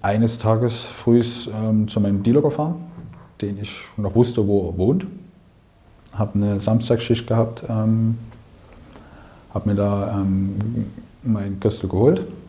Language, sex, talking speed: German, male, 130 wpm